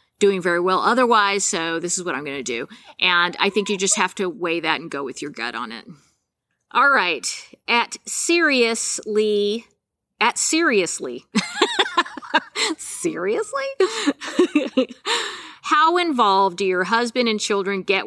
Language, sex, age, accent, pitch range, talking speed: English, female, 50-69, American, 180-240 Hz, 145 wpm